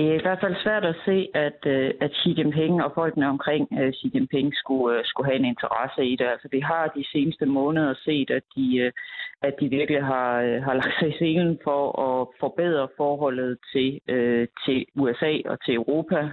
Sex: female